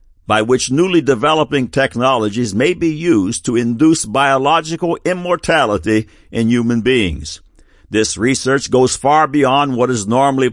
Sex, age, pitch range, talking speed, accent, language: male, 60-79, 105-145 Hz, 130 wpm, American, English